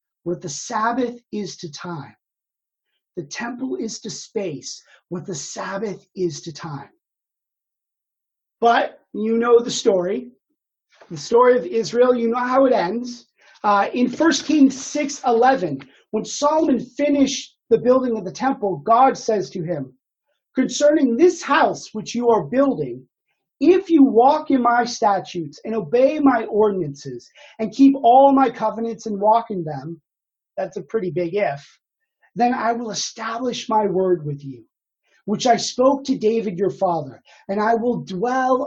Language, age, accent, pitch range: English, 30-49, American, 195-265 Hz